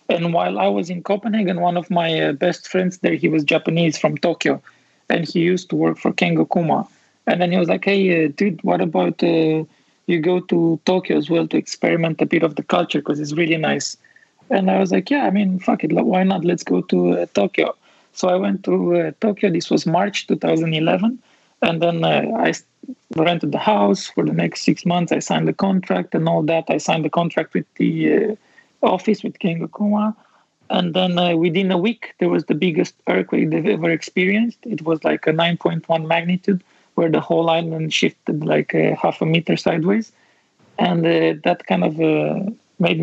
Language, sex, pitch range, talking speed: English, male, 160-185 Hz, 205 wpm